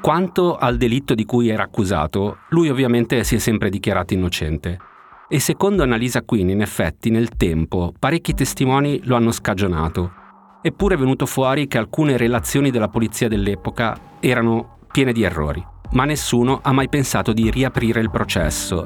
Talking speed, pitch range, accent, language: 160 wpm, 100-135 Hz, native, Italian